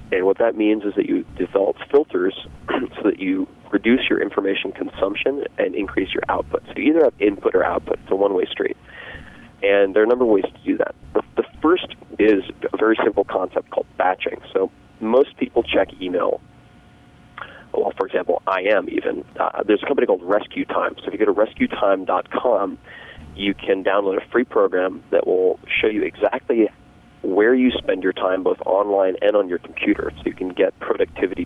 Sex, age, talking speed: male, 30-49, 195 wpm